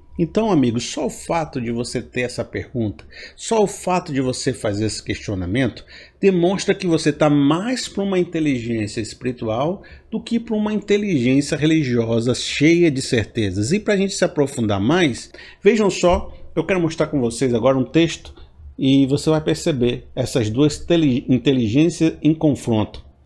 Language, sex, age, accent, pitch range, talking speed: Portuguese, male, 50-69, Brazilian, 115-170 Hz, 160 wpm